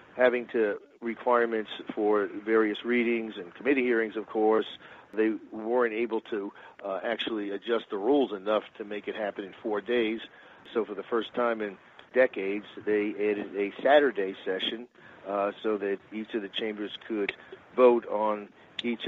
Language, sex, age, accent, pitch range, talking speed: English, male, 50-69, American, 110-125 Hz, 160 wpm